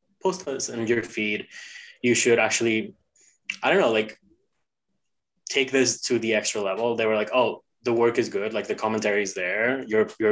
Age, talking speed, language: 20-39, 190 wpm, English